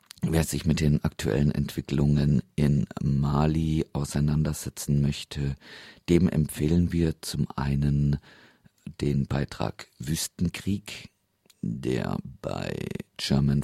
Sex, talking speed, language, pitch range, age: male, 90 wpm, German, 70-80 Hz, 50-69